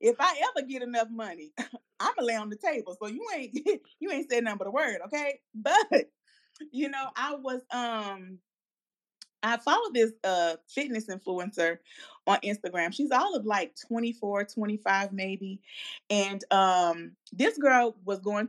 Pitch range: 195-250 Hz